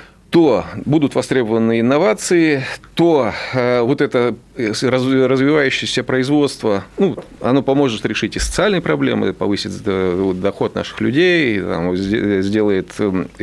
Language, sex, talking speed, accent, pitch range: Russian, male, 100 wpm, native, 105-140 Hz